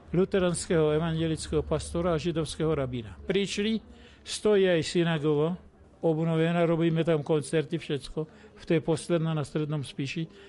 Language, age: Slovak, 60-79